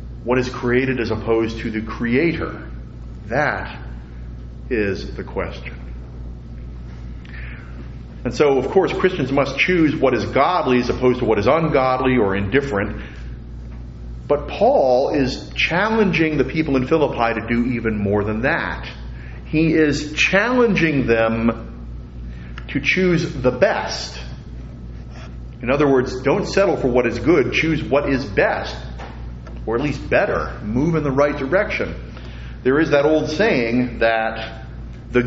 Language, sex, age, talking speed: English, male, 40-59, 140 wpm